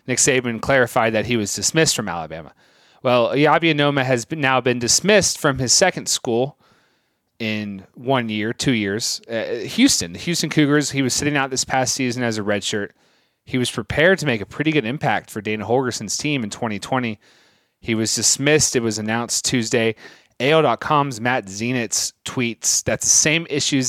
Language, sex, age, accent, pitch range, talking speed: English, male, 30-49, American, 105-130 Hz, 180 wpm